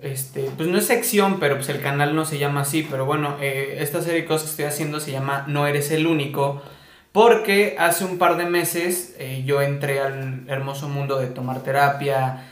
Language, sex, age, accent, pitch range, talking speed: Spanish, male, 20-39, Mexican, 140-170 Hz, 210 wpm